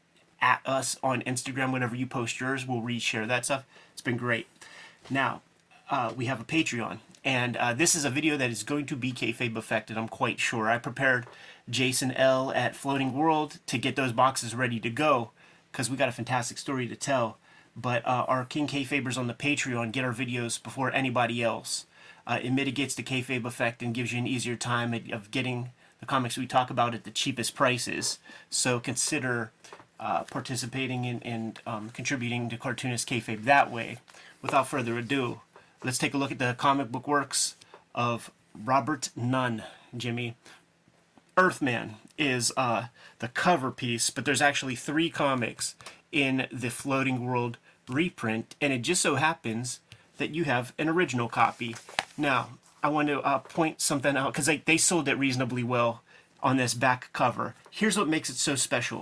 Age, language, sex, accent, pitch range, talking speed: 30-49, English, male, American, 120-140 Hz, 180 wpm